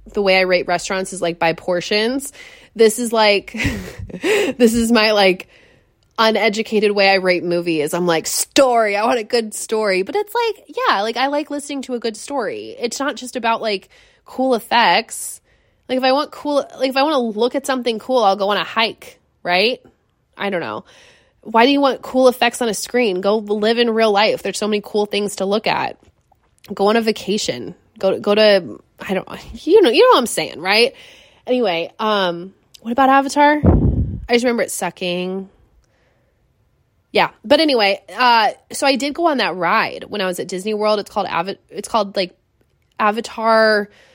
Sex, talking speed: female, 195 wpm